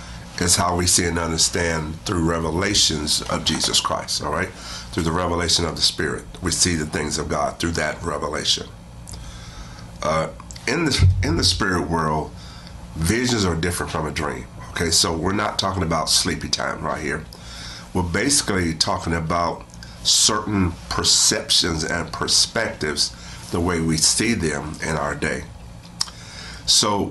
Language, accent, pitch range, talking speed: English, American, 75-90 Hz, 150 wpm